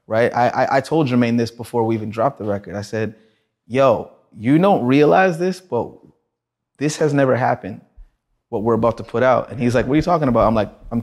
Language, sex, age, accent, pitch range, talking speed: English, male, 30-49, American, 115-140 Hz, 230 wpm